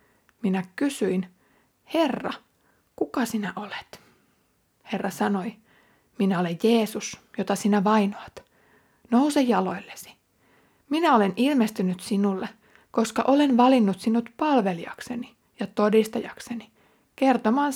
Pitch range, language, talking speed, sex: 200-240 Hz, Finnish, 95 wpm, female